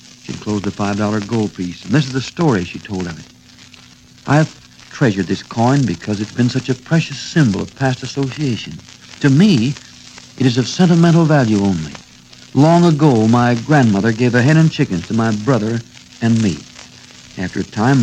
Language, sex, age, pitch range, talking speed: English, male, 60-79, 100-135 Hz, 185 wpm